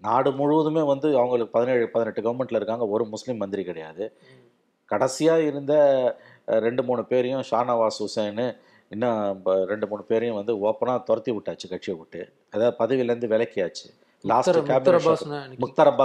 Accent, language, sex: native, Tamil, male